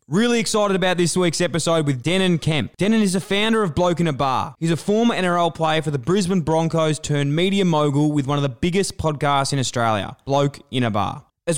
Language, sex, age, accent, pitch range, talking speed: English, male, 20-39, Australian, 145-190 Hz, 225 wpm